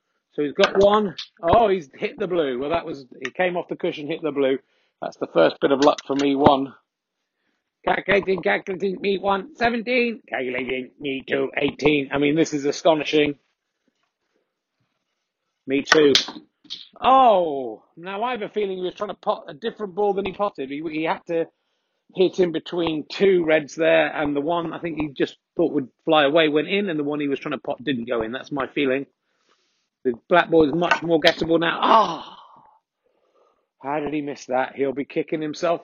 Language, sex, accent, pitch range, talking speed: English, male, British, 150-205 Hz, 200 wpm